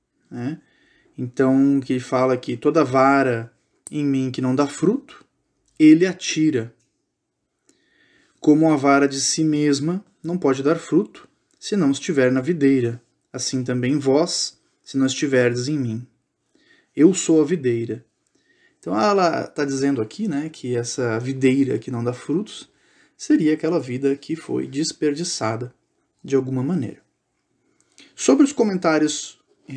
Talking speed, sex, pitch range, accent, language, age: 135 wpm, male, 125-160 Hz, Brazilian, Portuguese, 20-39